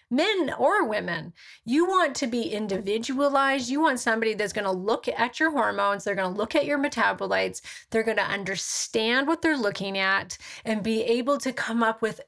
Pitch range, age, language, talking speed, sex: 205-275 Hz, 30-49, English, 180 wpm, female